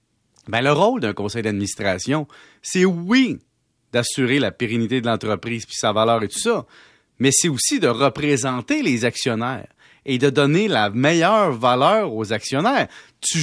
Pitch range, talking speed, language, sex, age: 120-170 Hz, 155 wpm, French, male, 30-49